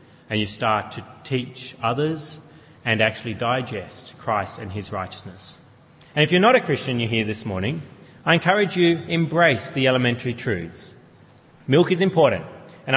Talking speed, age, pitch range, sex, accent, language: 155 wpm, 30-49, 110-155 Hz, male, Australian, English